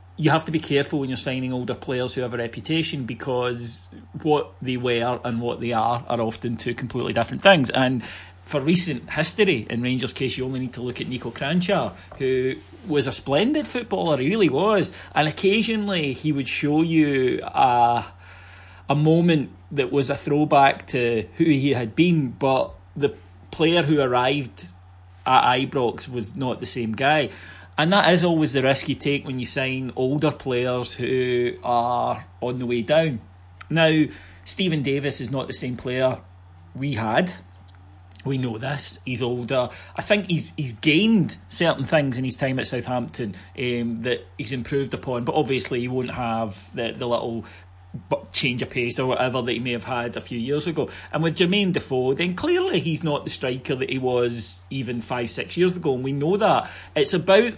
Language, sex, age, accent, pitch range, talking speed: English, male, 30-49, British, 120-150 Hz, 185 wpm